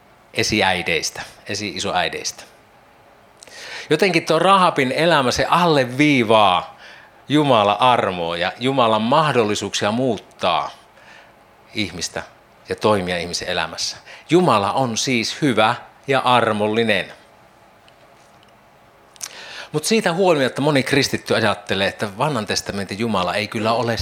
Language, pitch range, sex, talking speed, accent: Finnish, 100-145 Hz, male, 90 wpm, native